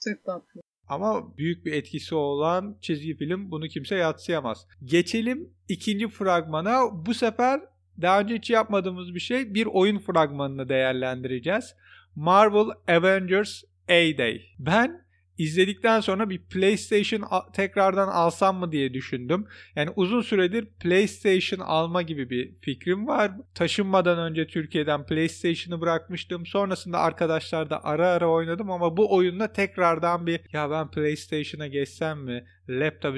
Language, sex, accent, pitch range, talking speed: Turkish, male, native, 150-195 Hz, 130 wpm